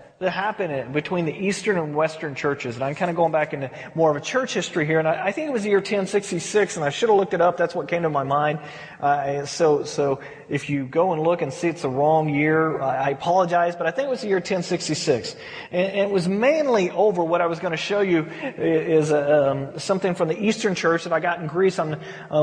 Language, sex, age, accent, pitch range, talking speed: English, male, 30-49, American, 160-205 Hz, 260 wpm